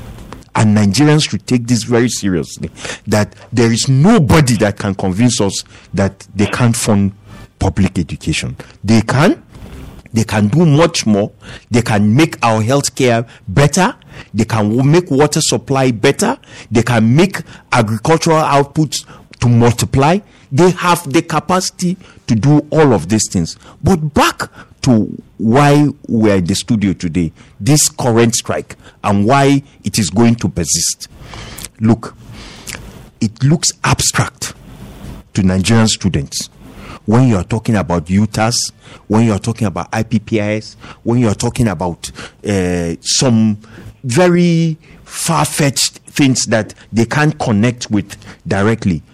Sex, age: male, 50-69